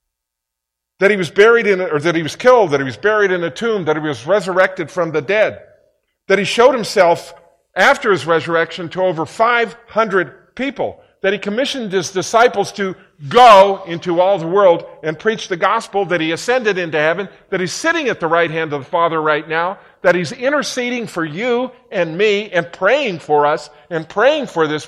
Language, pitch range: English, 165-225 Hz